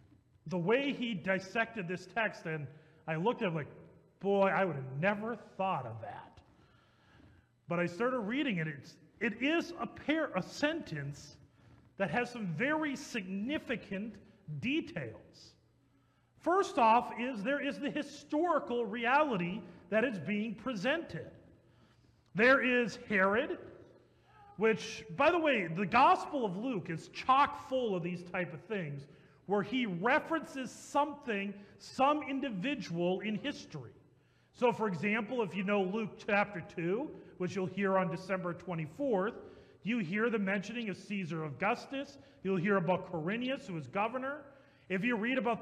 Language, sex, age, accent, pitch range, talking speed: English, male, 40-59, American, 180-260 Hz, 145 wpm